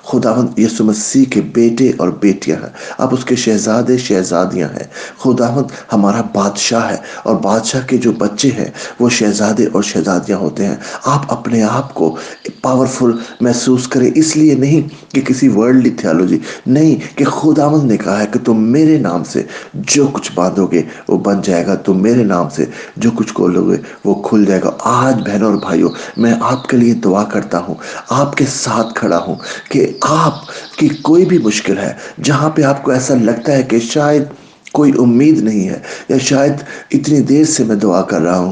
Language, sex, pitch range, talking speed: English, male, 105-140 Hz, 160 wpm